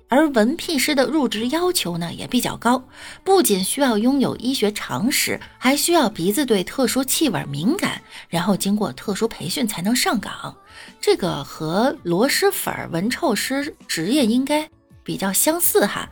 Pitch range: 200-295 Hz